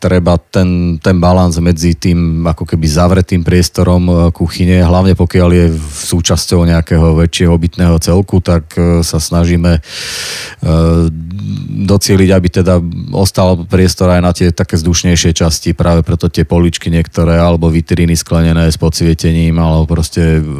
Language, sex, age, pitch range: Slovak, male, 30-49, 75-90 Hz